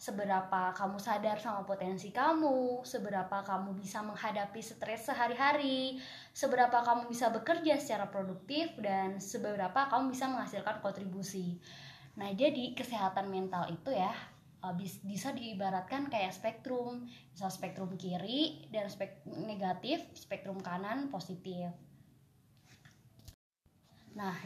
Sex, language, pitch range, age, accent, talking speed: female, Indonesian, 190-245 Hz, 20-39, native, 110 wpm